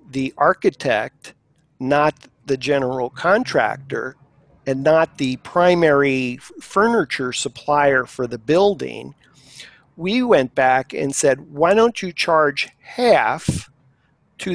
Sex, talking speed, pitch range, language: male, 105 wpm, 135-165 Hz, English